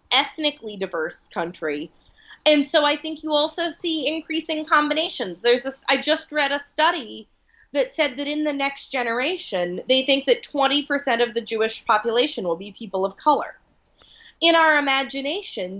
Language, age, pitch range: English, 30-49, 205-310 Hz